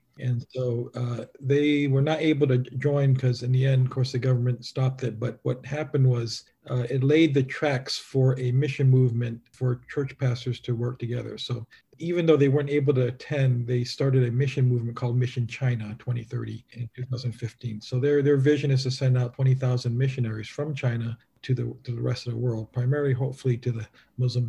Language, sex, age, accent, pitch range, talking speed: English, male, 40-59, American, 120-135 Hz, 200 wpm